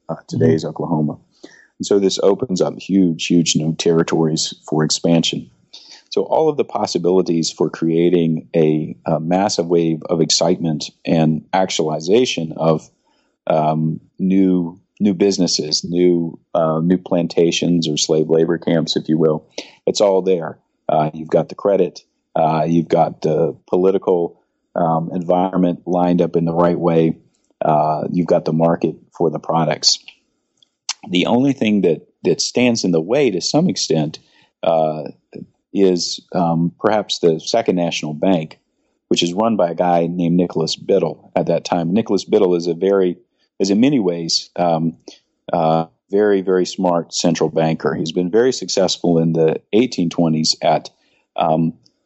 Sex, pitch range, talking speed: male, 80-90 Hz, 150 wpm